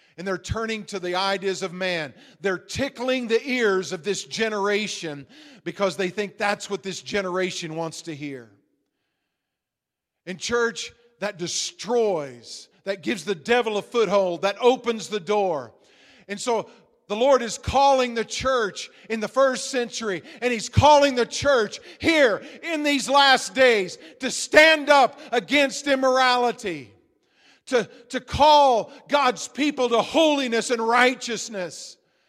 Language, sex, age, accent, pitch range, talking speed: English, male, 50-69, American, 205-270 Hz, 140 wpm